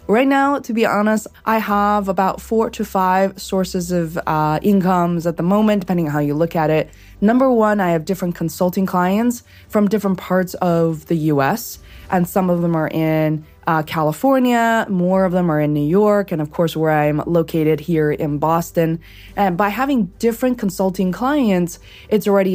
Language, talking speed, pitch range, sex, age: English, 185 wpm, 165-200 Hz, female, 20-39